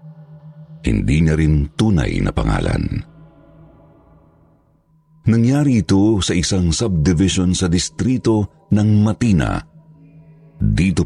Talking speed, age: 75 wpm, 50-69